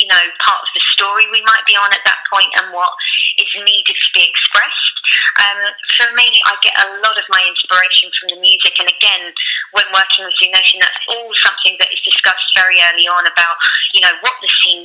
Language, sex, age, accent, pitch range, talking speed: English, female, 20-39, British, 180-210 Hz, 220 wpm